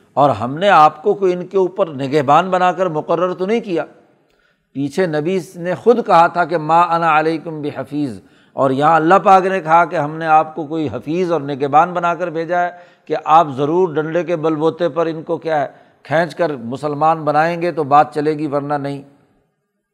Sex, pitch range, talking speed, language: male, 155-185 Hz, 210 wpm, Urdu